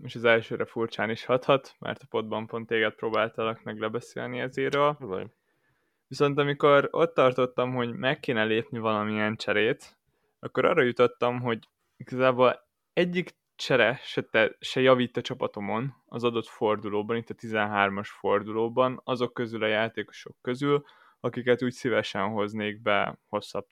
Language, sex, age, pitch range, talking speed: Hungarian, male, 20-39, 110-130 Hz, 140 wpm